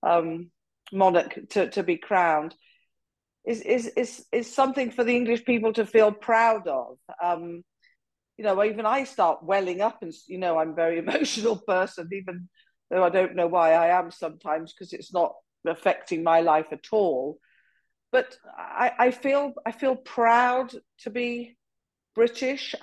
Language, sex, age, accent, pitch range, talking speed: English, female, 50-69, British, 170-230 Hz, 165 wpm